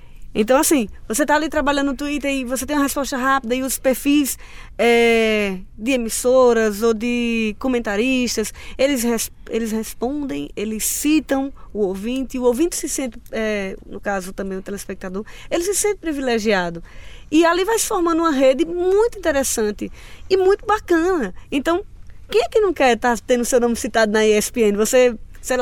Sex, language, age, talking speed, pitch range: female, Portuguese, 20-39, 175 wpm, 200-275 Hz